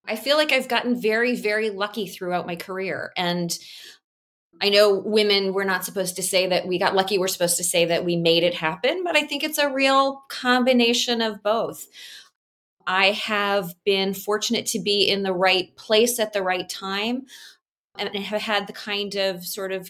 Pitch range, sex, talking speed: 175-210 Hz, female, 195 wpm